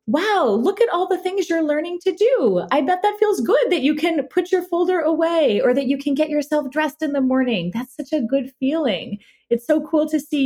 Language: English